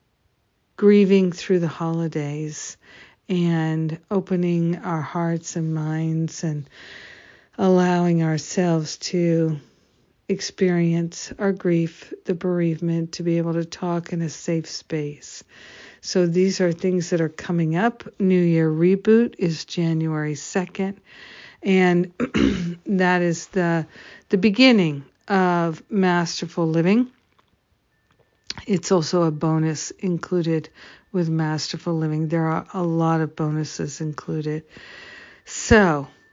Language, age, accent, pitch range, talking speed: English, 50-69, American, 160-185 Hz, 110 wpm